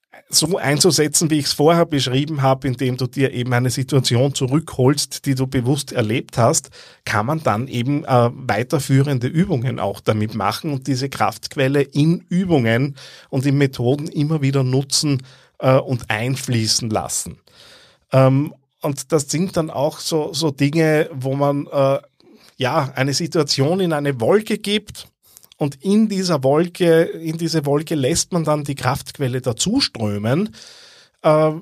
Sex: male